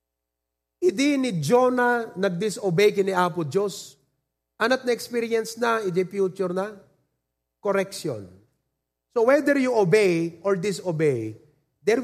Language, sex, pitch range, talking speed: English, male, 140-210 Hz, 105 wpm